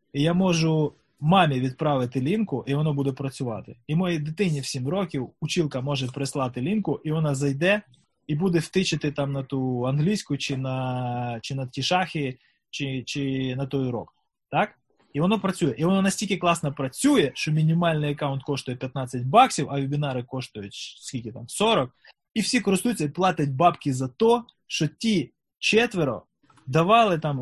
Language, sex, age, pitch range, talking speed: Ukrainian, male, 20-39, 135-175 Hz, 160 wpm